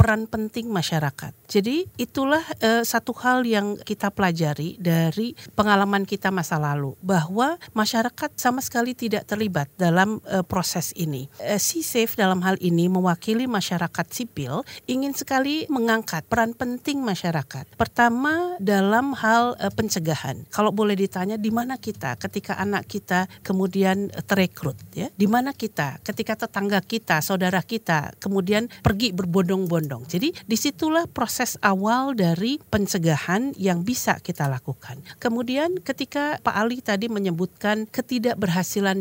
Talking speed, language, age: 130 wpm, Indonesian, 50-69